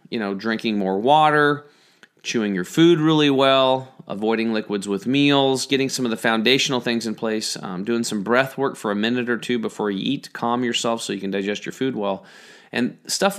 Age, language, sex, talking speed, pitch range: 30-49, English, male, 205 wpm, 100-125 Hz